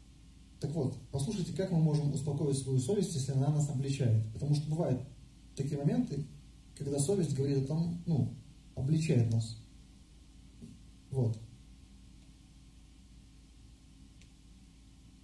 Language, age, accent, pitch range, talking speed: Russian, 40-59, American, 125-155 Hz, 105 wpm